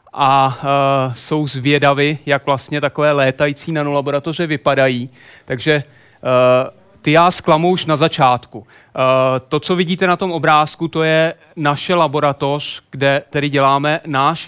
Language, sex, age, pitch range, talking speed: Czech, male, 30-49, 140-165 Hz, 135 wpm